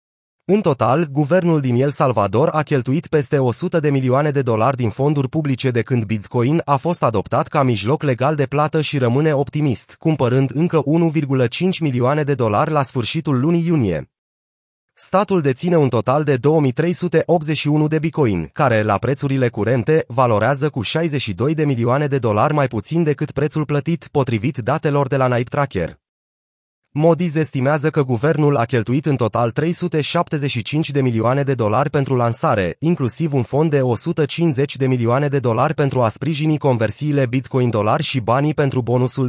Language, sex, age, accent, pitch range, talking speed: Romanian, male, 30-49, native, 125-155 Hz, 160 wpm